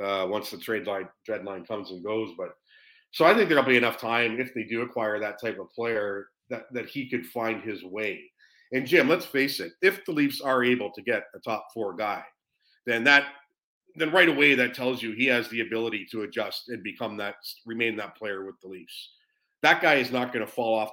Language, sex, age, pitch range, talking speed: English, male, 40-59, 110-130 Hz, 225 wpm